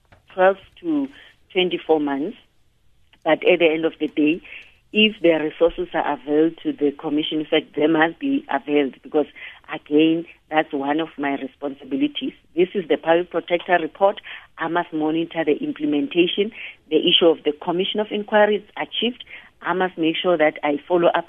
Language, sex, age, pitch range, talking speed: English, female, 40-59, 155-195 Hz, 170 wpm